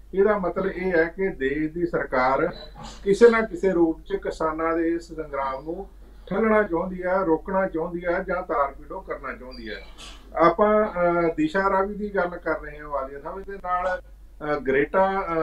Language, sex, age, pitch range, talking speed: Punjabi, male, 50-69, 160-200 Hz, 170 wpm